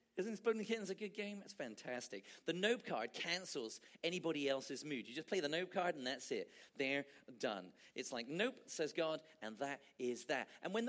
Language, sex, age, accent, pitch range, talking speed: English, male, 40-59, British, 160-230 Hz, 210 wpm